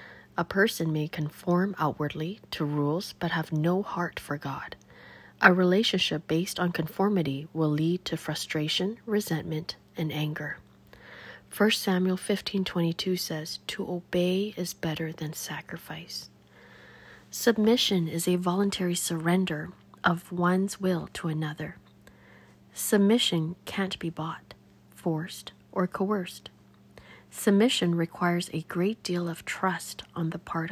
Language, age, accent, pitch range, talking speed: English, 40-59, American, 155-185 Hz, 120 wpm